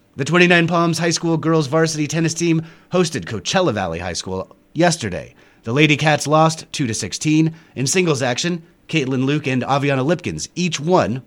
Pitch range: 115-170 Hz